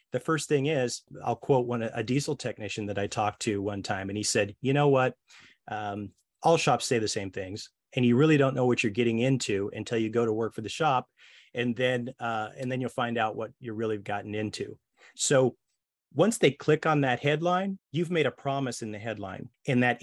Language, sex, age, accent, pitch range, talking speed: English, male, 30-49, American, 110-140 Hz, 230 wpm